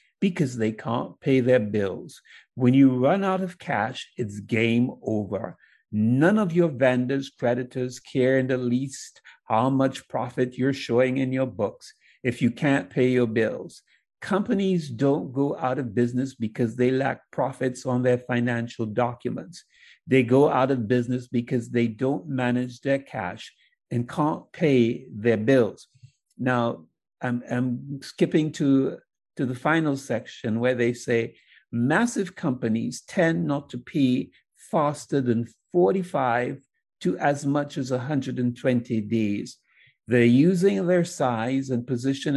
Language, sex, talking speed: English, male, 145 wpm